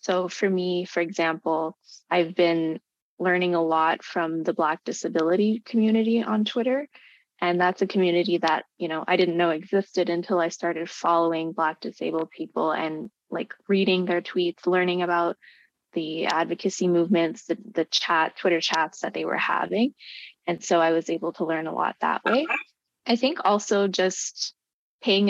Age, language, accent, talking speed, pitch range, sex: 20-39, English, American, 165 wpm, 170-195 Hz, female